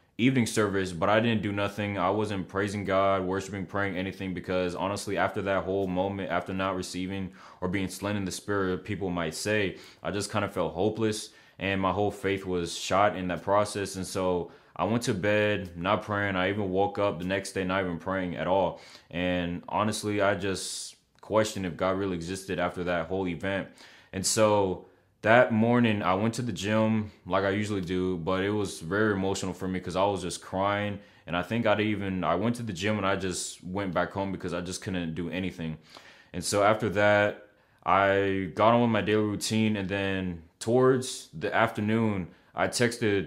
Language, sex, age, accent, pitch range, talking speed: English, male, 20-39, American, 95-105 Hz, 200 wpm